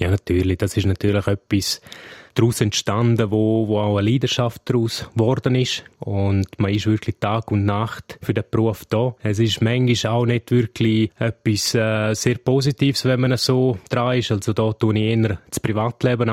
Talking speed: 180 wpm